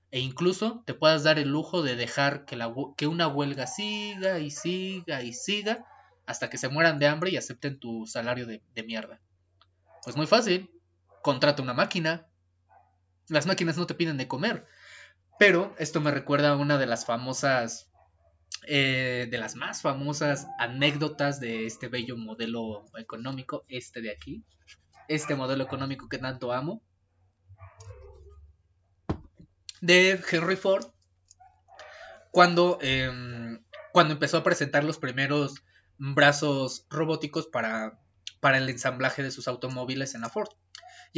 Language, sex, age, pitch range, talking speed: Spanish, male, 20-39, 115-155 Hz, 140 wpm